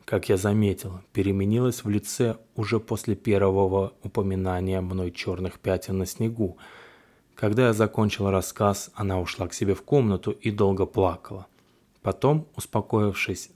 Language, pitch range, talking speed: Russian, 95-110 Hz, 135 wpm